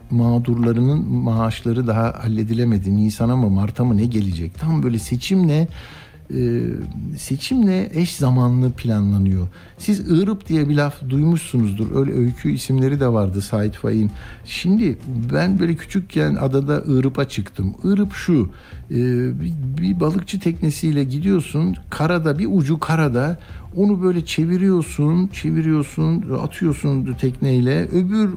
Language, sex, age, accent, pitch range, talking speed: Turkish, male, 60-79, native, 120-175 Hz, 115 wpm